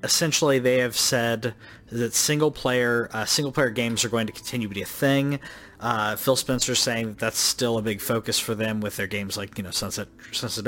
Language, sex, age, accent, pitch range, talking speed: English, male, 30-49, American, 105-125 Hz, 210 wpm